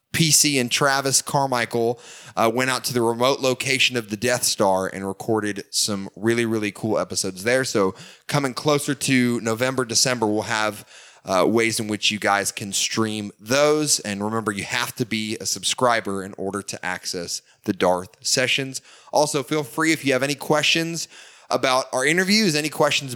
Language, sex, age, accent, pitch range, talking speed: English, male, 20-39, American, 105-145 Hz, 175 wpm